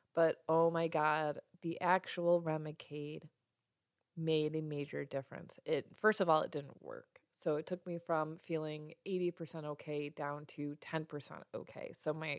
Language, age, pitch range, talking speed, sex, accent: English, 20-39, 155-190 Hz, 155 wpm, female, American